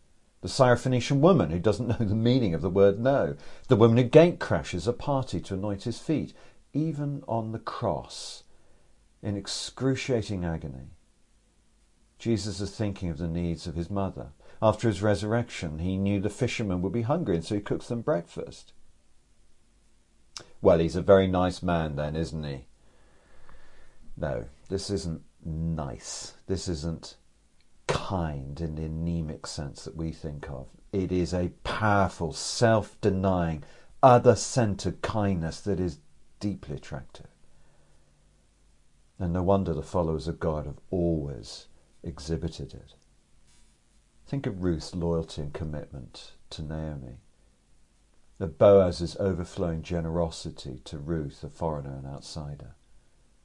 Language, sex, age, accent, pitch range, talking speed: English, male, 50-69, British, 80-105 Hz, 130 wpm